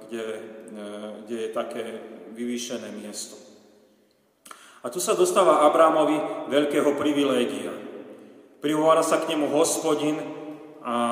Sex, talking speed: male, 105 wpm